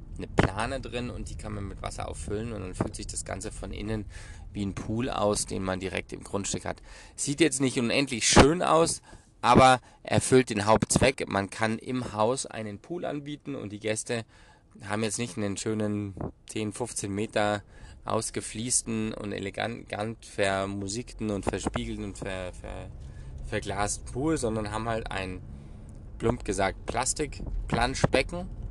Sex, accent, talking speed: male, German, 150 wpm